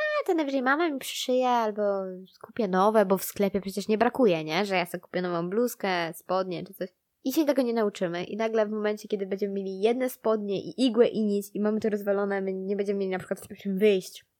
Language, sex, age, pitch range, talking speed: Polish, female, 20-39, 195-250 Hz, 230 wpm